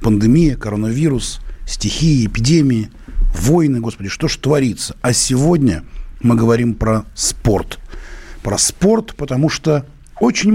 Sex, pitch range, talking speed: male, 140-180 Hz, 115 wpm